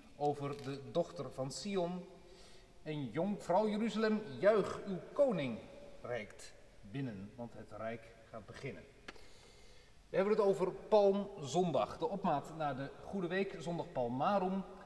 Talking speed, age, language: 130 wpm, 40-59, Dutch